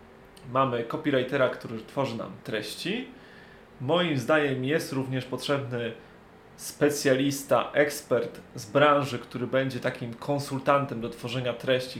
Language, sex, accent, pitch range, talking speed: Polish, male, native, 125-150 Hz, 110 wpm